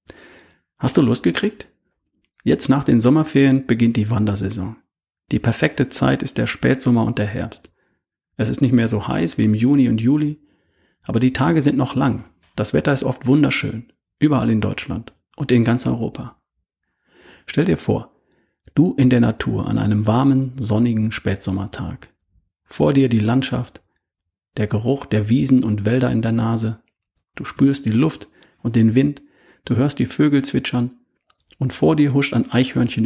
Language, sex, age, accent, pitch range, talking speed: German, male, 40-59, German, 110-135 Hz, 165 wpm